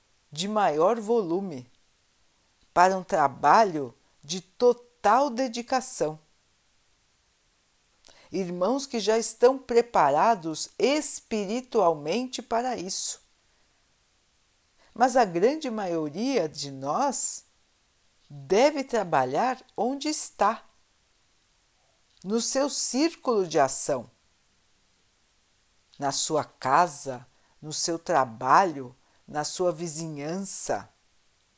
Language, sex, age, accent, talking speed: Portuguese, female, 50-69, Brazilian, 80 wpm